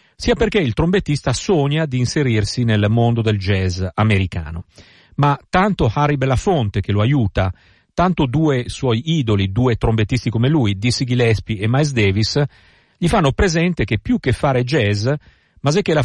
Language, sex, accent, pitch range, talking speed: Italian, male, native, 105-140 Hz, 155 wpm